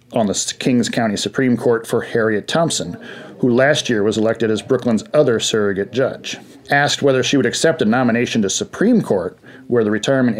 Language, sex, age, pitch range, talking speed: English, male, 40-59, 115-145 Hz, 185 wpm